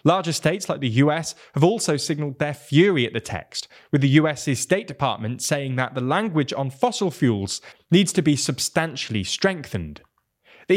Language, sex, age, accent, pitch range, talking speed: English, male, 20-39, British, 125-180 Hz, 175 wpm